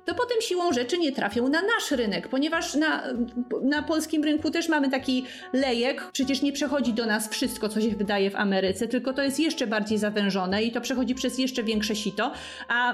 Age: 30-49